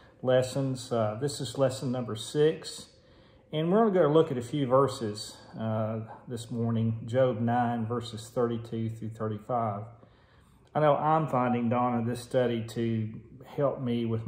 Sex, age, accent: male, 40-59, American